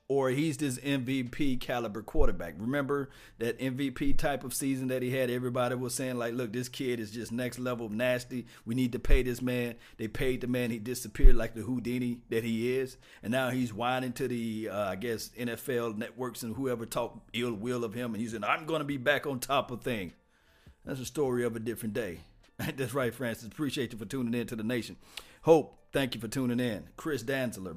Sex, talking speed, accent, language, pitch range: male, 220 wpm, American, English, 115-130 Hz